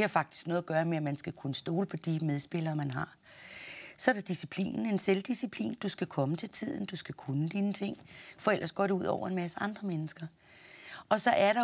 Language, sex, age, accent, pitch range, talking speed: Danish, female, 30-49, native, 165-200 Hz, 240 wpm